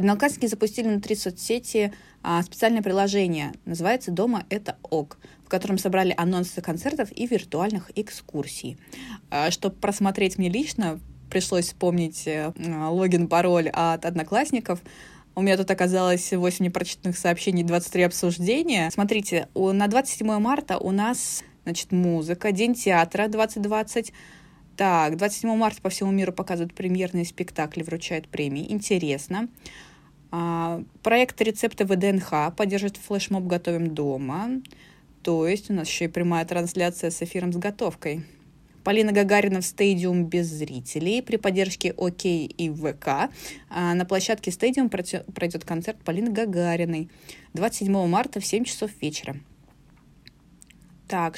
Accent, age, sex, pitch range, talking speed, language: native, 20-39, female, 170-205 Hz, 125 wpm, Russian